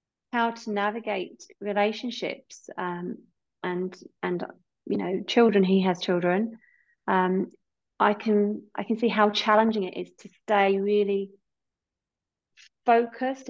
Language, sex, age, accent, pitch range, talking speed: English, female, 30-49, British, 185-215 Hz, 120 wpm